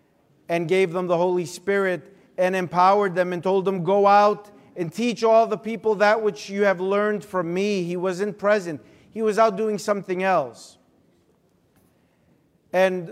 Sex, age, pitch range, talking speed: male, 50-69, 175-215 Hz, 165 wpm